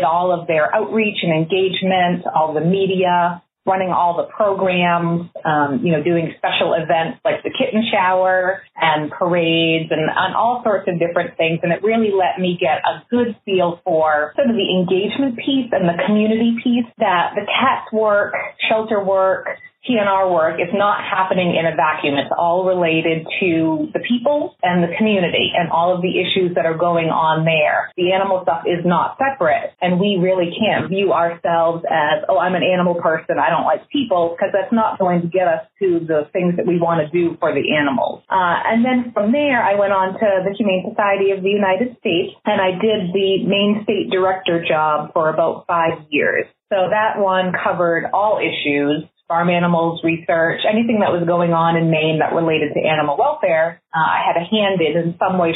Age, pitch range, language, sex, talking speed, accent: 30-49, 165-210 Hz, English, female, 195 wpm, American